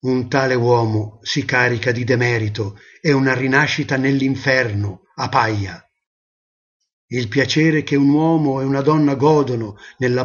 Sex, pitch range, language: male, 115-145 Hz, Italian